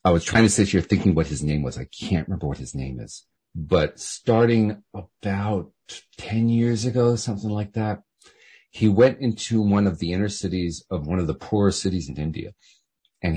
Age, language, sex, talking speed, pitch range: 40-59, English, male, 200 wpm, 90-115 Hz